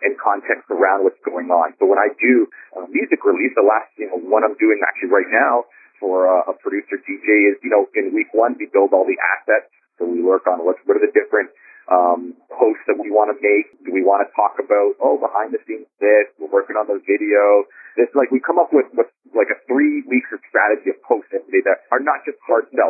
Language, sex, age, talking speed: English, male, 40-59, 240 wpm